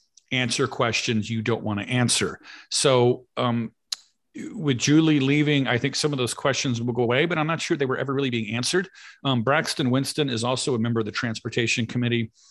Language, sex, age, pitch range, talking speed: English, male, 40-59, 115-135 Hz, 200 wpm